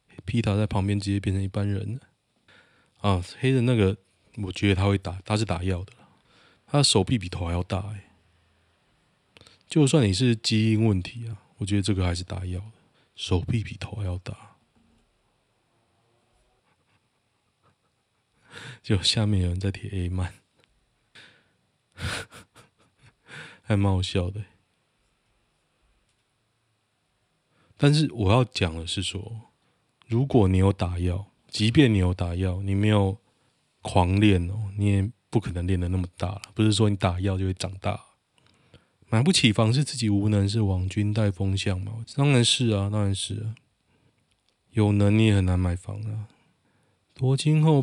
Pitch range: 95-115 Hz